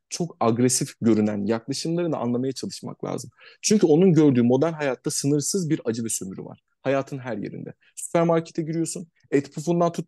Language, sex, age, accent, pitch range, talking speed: Turkish, male, 30-49, native, 125-165 Hz, 155 wpm